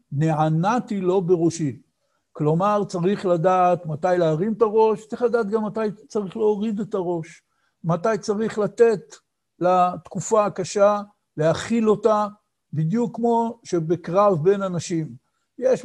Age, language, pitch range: 60-79, Hebrew, 170-210 Hz